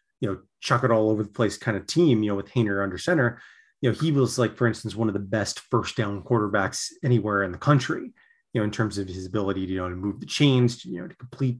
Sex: male